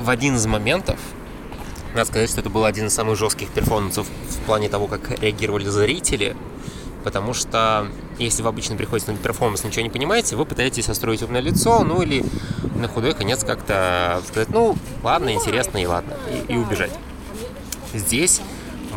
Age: 20-39